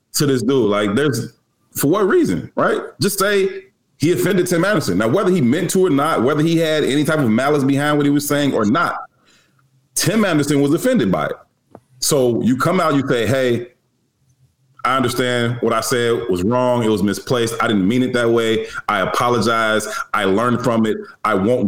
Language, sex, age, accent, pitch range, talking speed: English, male, 30-49, American, 125-175 Hz, 200 wpm